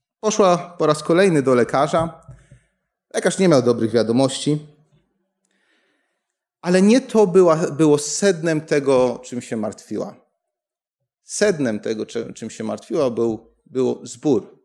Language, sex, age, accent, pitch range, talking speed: Polish, male, 30-49, native, 140-195 Hz, 120 wpm